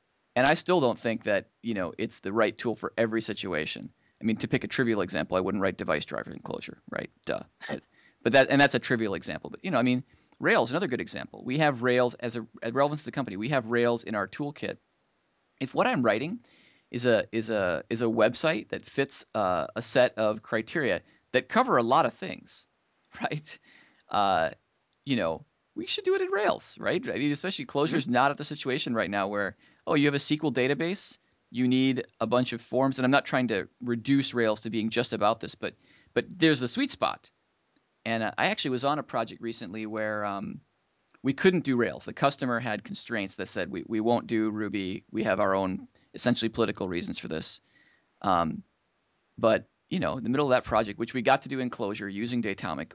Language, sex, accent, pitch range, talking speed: English, male, American, 110-140 Hz, 220 wpm